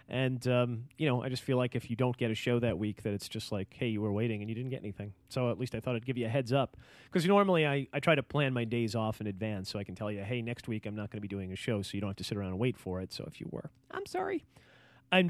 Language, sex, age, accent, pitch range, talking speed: English, male, 30-49, American, 105-135 Hz, 335 wpm